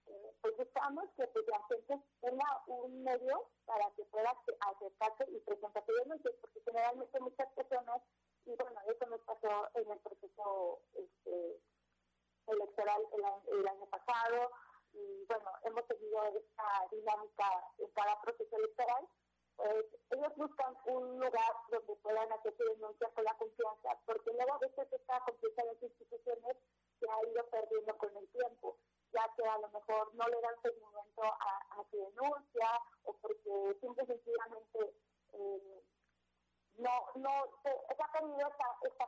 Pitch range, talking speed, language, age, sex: 215-285 Hz, 150 wpm, Spanish, 50-69, female